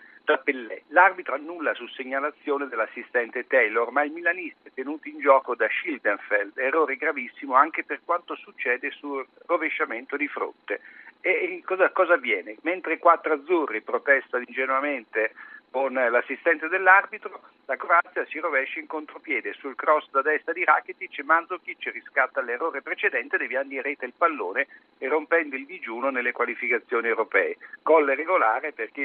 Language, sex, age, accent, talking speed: Italian, male, 50-69, native, 145 wpm